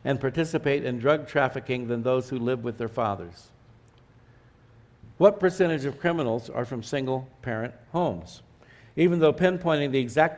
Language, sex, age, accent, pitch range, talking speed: English, male, 60-79, American, 120-155 Hz, 145 wpm